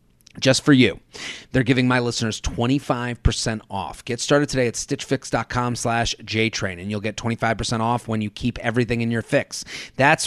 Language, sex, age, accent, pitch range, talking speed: English, male, 30-49, American, 110-130 Hz, 170 wpm